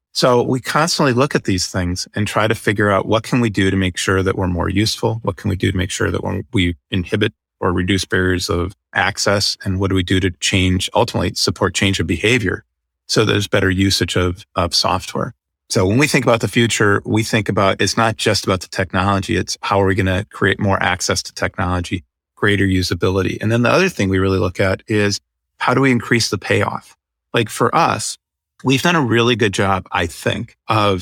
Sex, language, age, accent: male, English, 30-49, American